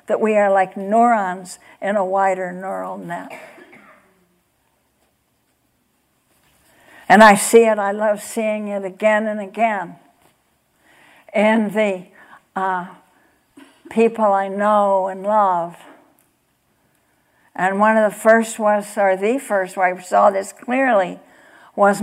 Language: English